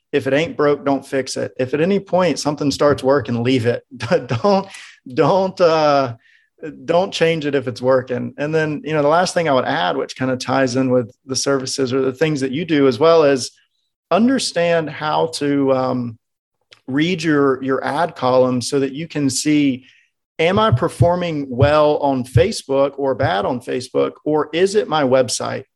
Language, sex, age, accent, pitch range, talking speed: English, male, 40-59, American, 130-160 Hz, 190 wpm